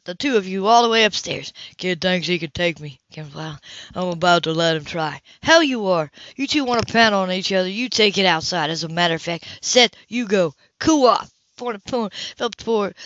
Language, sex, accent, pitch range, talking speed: English, female, American, 165-230 Hz, 220 wpm